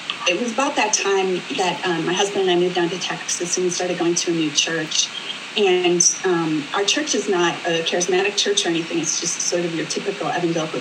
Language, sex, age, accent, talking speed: English, female, 30-49, American, 230 wpm